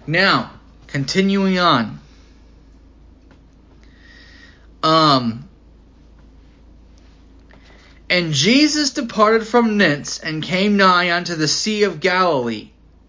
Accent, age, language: American, 30-49, English